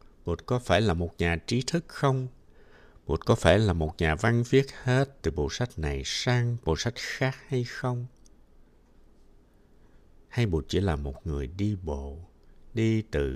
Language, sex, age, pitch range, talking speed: Vietnamese, male, 60-79, 75-115 Hz, 170 wpm